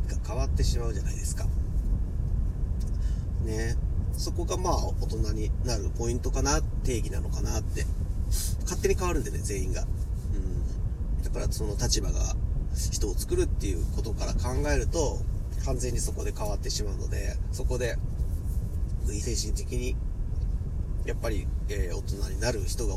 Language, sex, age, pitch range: Japanese, male, 40-59, 80-100 Hz